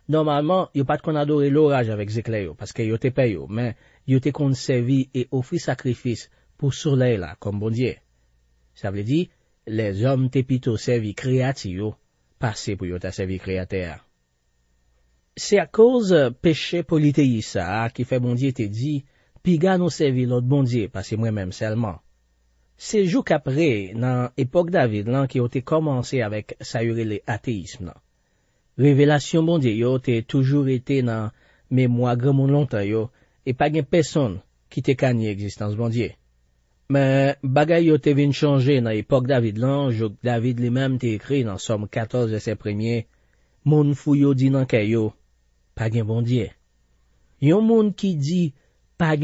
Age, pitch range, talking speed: 40-59, 110-145 Hz, 165 wpm